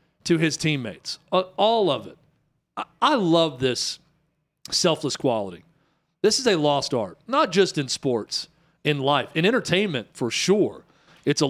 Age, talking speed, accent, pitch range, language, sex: 40-59, 155 wpm, American, 145-180 Hz, English, male